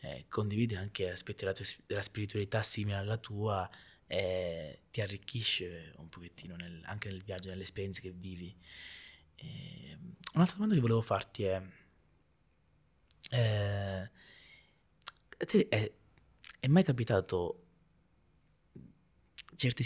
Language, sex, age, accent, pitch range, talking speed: Italian, male, 20-39, native, 100-120 Hz, 120 wpm